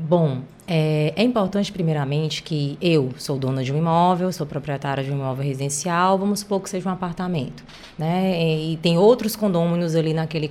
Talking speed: 185 wpm